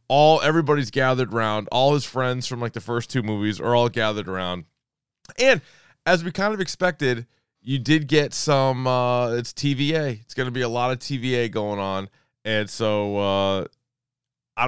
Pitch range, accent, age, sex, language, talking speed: 115-145 Hz, American, 20-39, male, English, 180 wpm